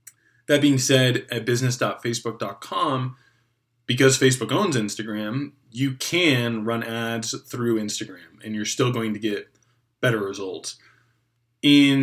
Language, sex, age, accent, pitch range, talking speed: English, male, 20-39, American, 115-140 Hz, 120 wpm